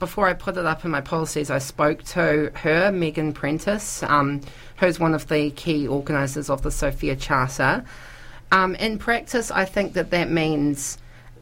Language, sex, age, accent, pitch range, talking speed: English, female, 40-59, Australian, 140-175 Hz, 175 wpm